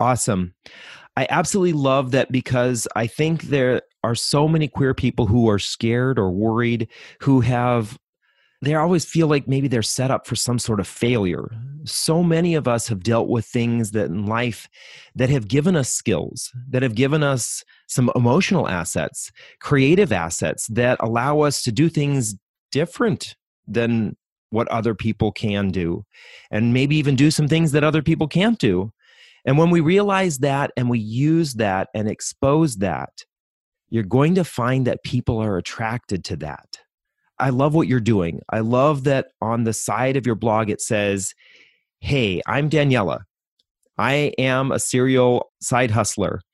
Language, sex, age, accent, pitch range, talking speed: English, male, 30-49, American, 110-140 Hz, 170 wpm